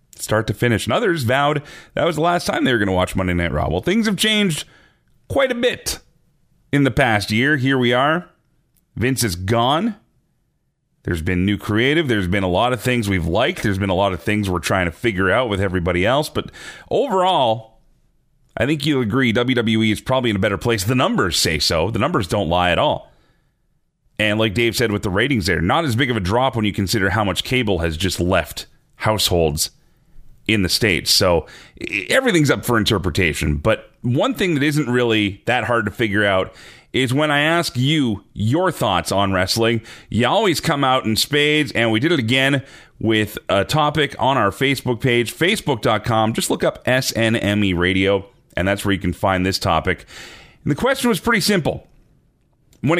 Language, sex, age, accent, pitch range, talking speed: English, male, 30-49, American, 100-145 Hz, 200 wpm